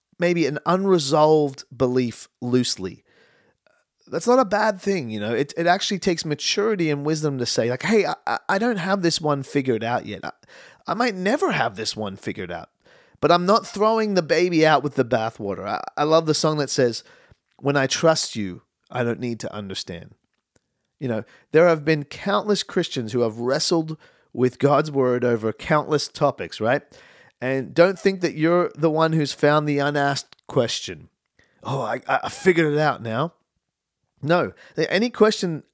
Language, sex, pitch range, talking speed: English, male, 125-180 Hz, 180 wpm